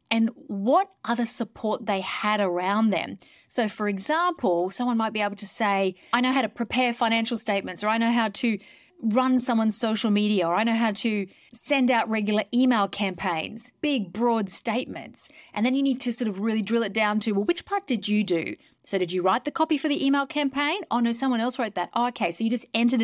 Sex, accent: female, Australian